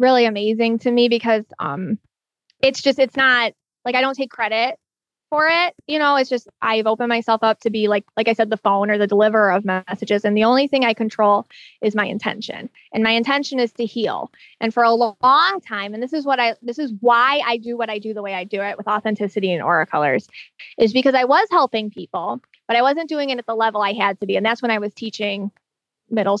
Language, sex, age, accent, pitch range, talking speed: English, female, 20-39, American, 210-250 Hz, 240 wpm